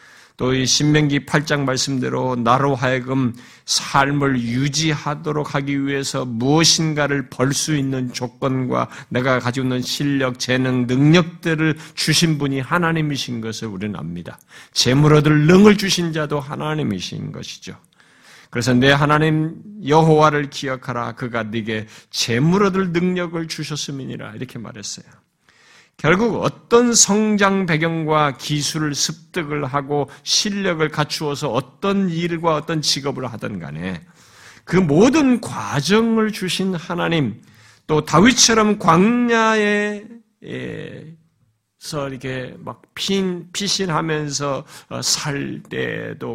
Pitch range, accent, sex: 125-165 Hz, native, male